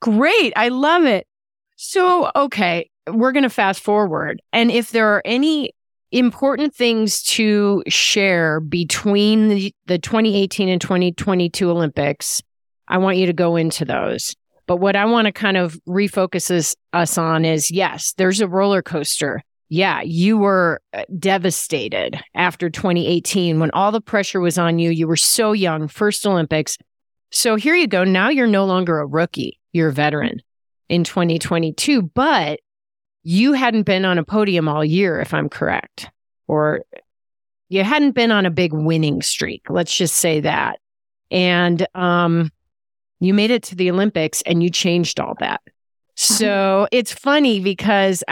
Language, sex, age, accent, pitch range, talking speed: English, female, 30-49, American, 165-210 Hz, 160 wpm